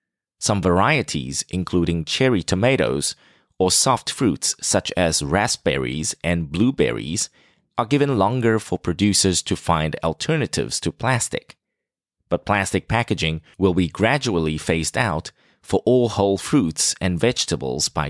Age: 30-49